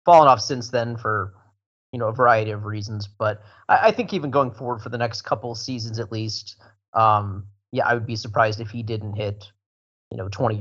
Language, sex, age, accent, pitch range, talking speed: English, male, 30-49, American, 105-130 Hz, 220 wpm